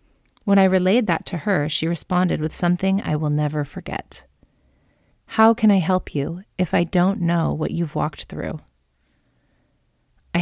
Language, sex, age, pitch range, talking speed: English, female, 30-49, 150-185 Hz, 160 wpm